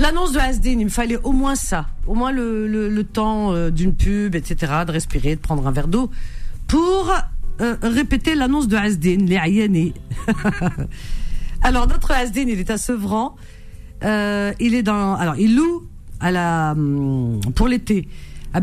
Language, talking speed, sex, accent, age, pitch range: French, 170 wpm, female, French, 50-69, 155-225 Hz